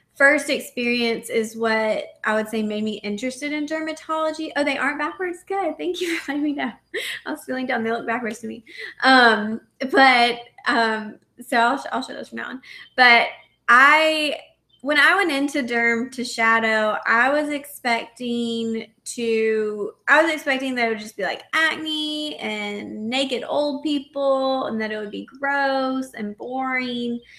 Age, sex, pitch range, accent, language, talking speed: 20-39, female, 220-275 Hz, American, English, 170 wpm